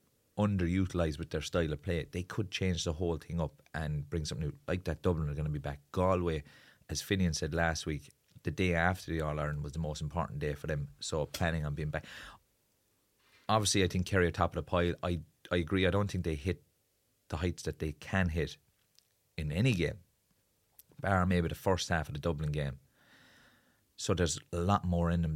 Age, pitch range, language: 30-49, 75-90 Hz, English